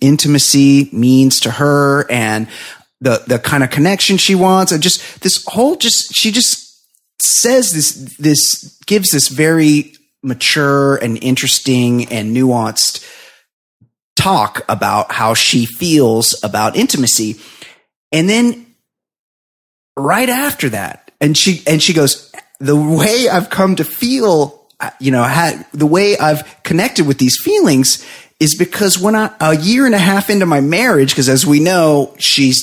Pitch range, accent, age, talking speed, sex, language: 135-200 Hz, American, 30-49, 145 wpm, male, English